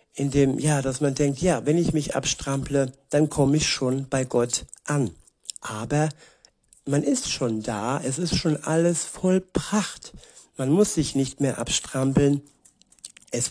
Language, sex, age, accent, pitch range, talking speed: German, male, 60-79, German, 130-150 Hz, 150 wpm